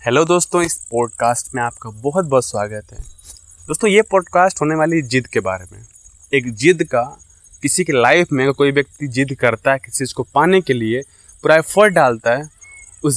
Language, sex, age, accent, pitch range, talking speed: English, male, 20-39, Indian, 120-180 Hz, 185 wpm